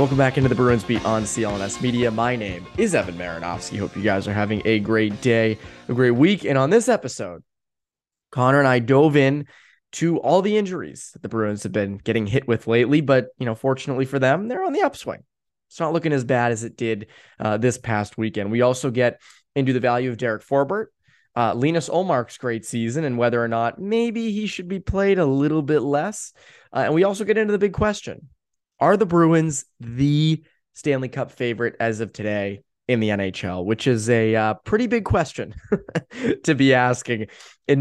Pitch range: 110-150 Hz